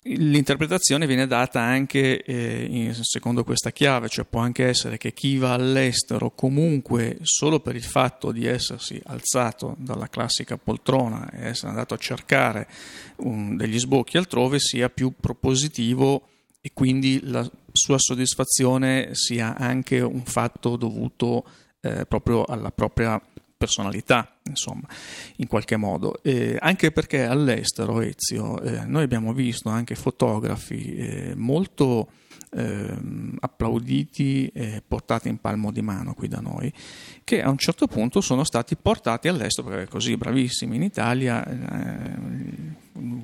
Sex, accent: male, native